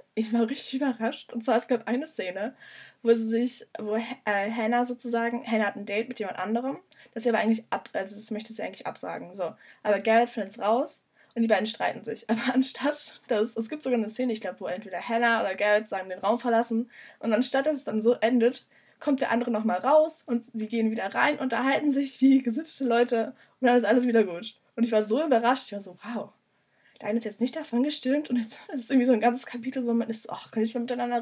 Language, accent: German, German